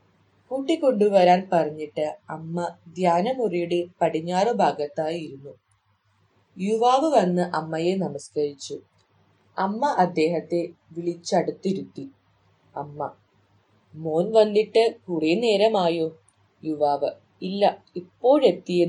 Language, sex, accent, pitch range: English, female, Indian, 130-190 Hz